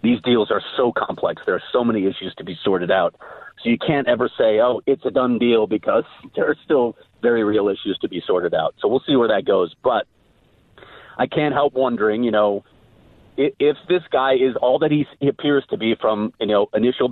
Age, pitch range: 40-59, 105-130 Hz